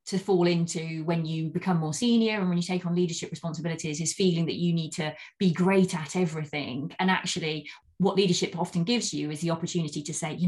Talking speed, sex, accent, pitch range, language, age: 220 wpm, female, British, 155-185 Hz, English, 20-39